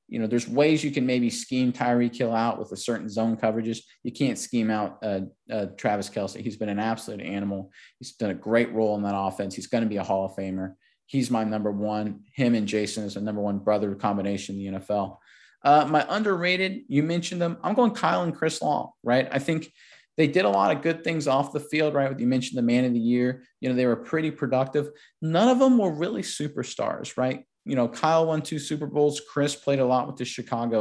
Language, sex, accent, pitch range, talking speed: English, male, American, 110-140 Hz, 235 wpm